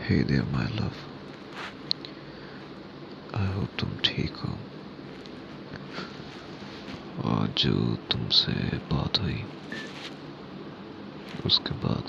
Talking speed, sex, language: 70 wpm, male, Hindi